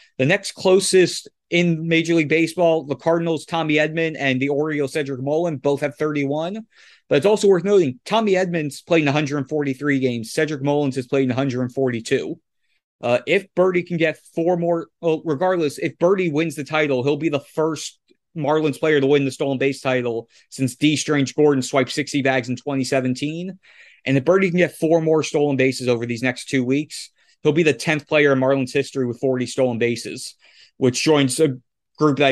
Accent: American